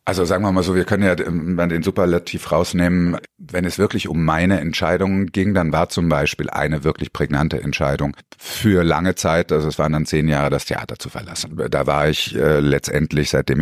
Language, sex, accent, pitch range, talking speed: German, male, German, 75-90 Hz, 200 wpm